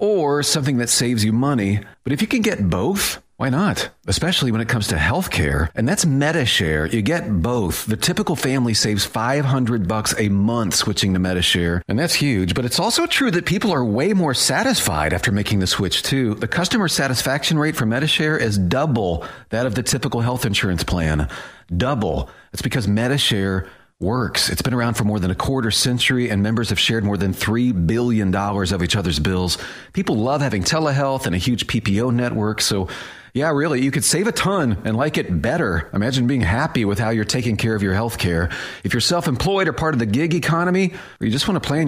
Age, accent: 40-59, American